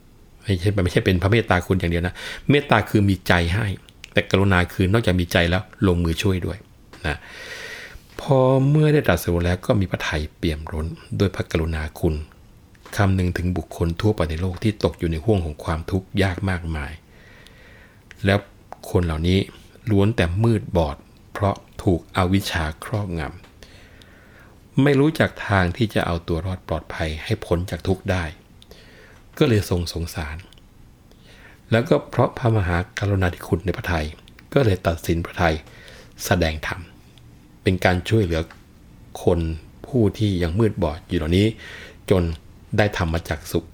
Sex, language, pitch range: male, Thai, 85-105 Hz